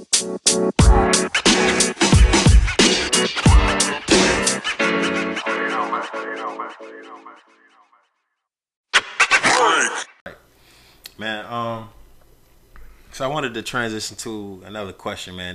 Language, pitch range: English, 90-115 Hz